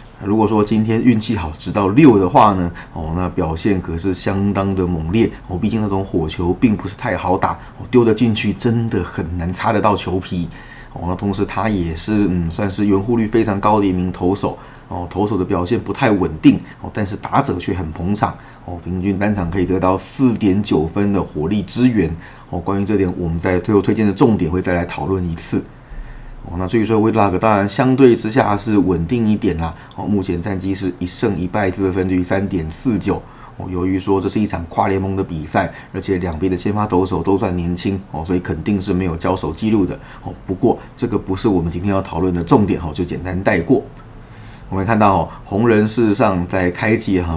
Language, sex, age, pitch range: Chinese, male, 30-49, 90-110 Hz